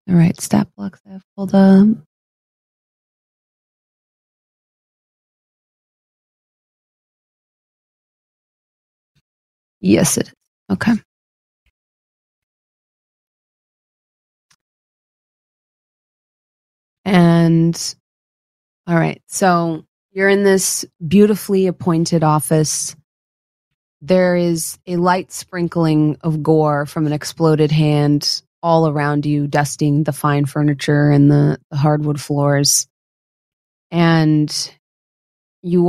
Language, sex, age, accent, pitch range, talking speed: English, female, 30-49, American, 145-175 Hz, 80 wpm